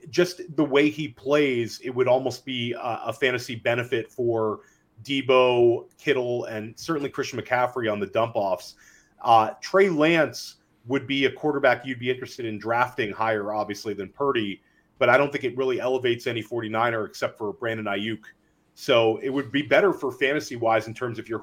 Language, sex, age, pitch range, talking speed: English, male, 30-49, 110-140 Hz, 175 wpm